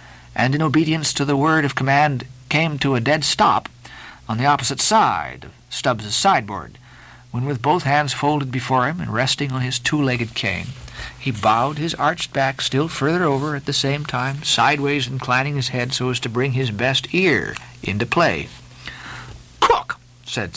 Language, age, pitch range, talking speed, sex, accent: English, 50-69, 130-220 Hz, 175 wpm, male, American